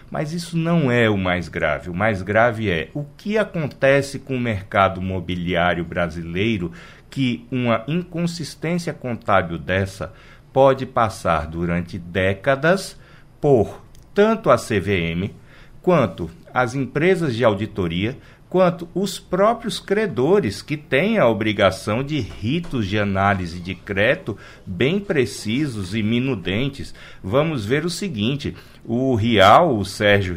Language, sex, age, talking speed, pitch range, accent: Portuguese, male, 60-79, 125 wpm, 105-165 Hz, Brazilian